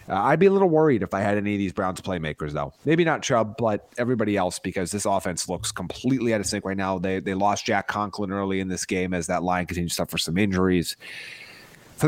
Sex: male